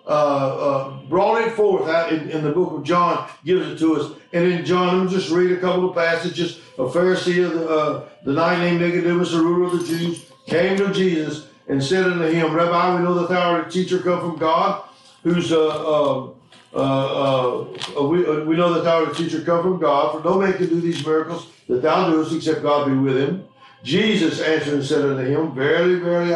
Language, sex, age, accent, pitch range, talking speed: English, male, 60-79, American, 150-175 Hz, 230 wpm